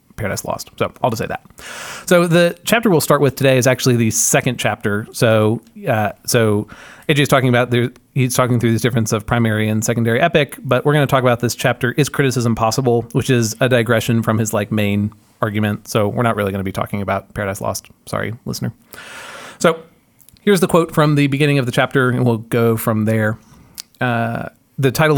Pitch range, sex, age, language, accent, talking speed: 110-145 Hz, male, 30-49, English, American, 210 wpm